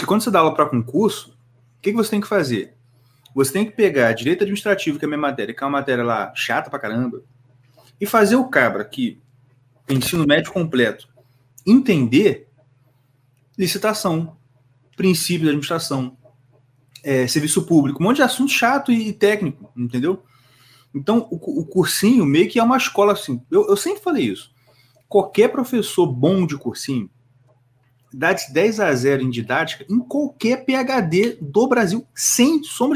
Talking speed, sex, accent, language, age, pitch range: 160 wpm, male, Brazilian, Portuguese, 30-49, 125-205 Hz